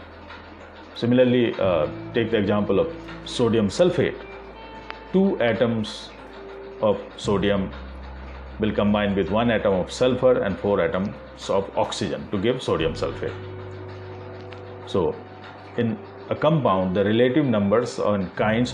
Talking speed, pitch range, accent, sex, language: 120 wpm, 95-125 Hz, native, male, Hindi